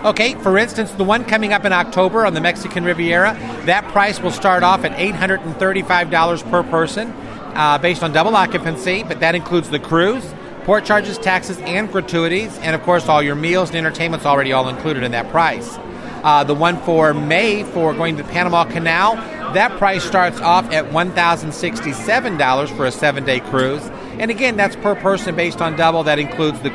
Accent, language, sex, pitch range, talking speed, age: American, English, male, 155-190 Hz, 190 wpm, 40-59